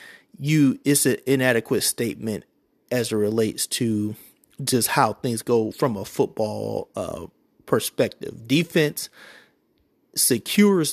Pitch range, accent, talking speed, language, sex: 115-140 Hz, American, 110 wpm, English, male